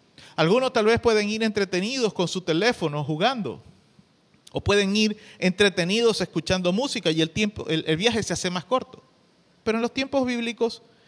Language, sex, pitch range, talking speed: Spanish, male, 170-225 Hz, 170 wpm